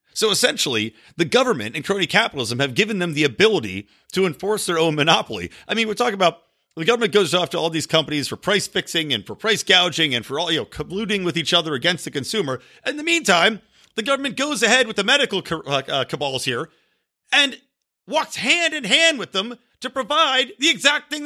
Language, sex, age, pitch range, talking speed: English, male, 40-59, 150-220 Hz, 205 wpm